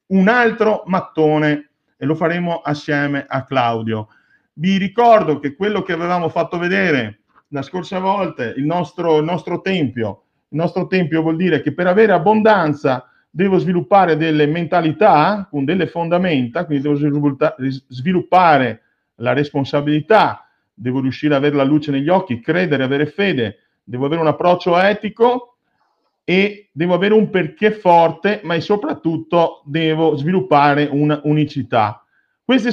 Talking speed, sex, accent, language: 140 wpm, male, native, Italian